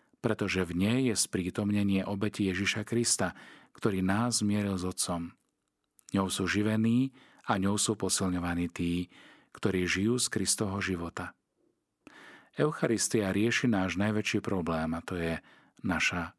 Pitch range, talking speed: 90-110 Hz, 130 wpm